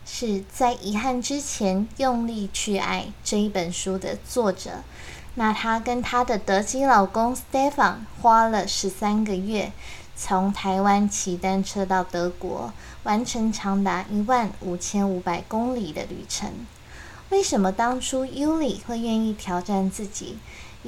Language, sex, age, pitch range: Chinese, female, 20-39, 190-230 Hz